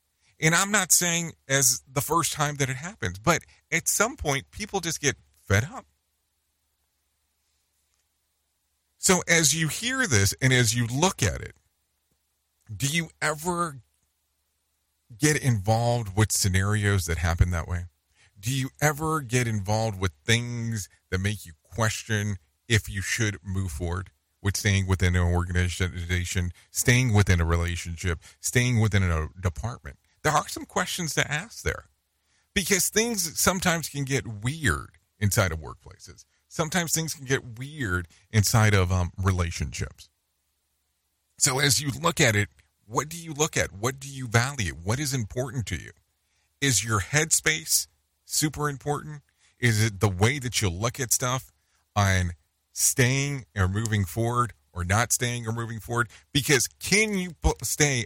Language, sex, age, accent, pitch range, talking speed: English, male, 40-59, American, 85-135 Hz, 150 wpm